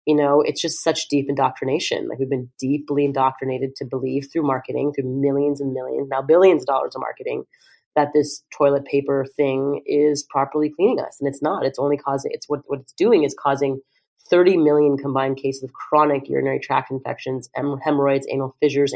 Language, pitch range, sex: English, 135-150 Hz, female